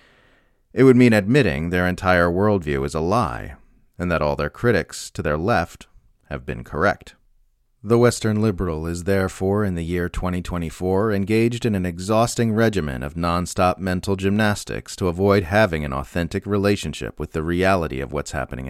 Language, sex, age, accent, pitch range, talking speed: English, male, 30-49, American, 75-100 Hz, 165 wpm